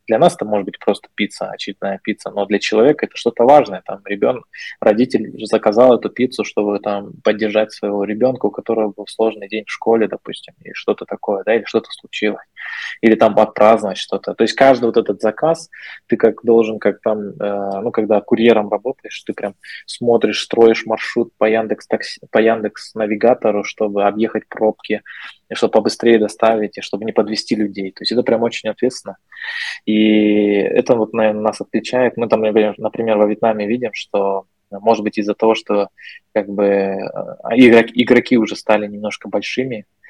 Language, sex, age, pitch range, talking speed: Russian, male, 20-39, 100-110 Hz, 170 wpm